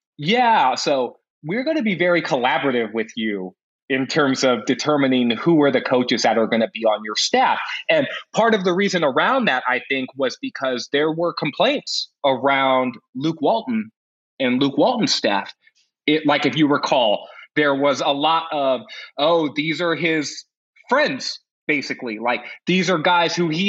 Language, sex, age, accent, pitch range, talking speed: English, male, 20-39, American, 130-180 Hz, 170 wpm